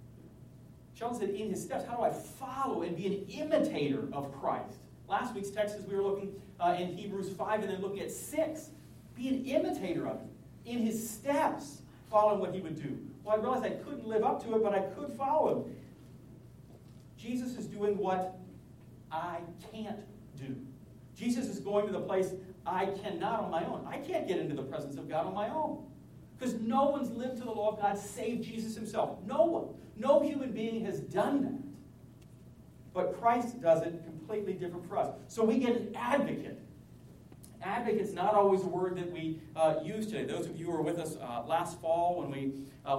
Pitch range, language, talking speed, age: 180-235 Hz, English, 200 wpm, 40-59